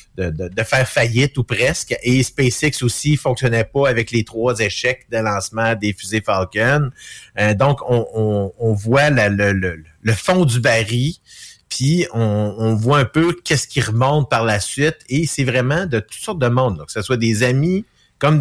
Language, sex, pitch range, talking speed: French, male, 110-140 Hz, 195 wpm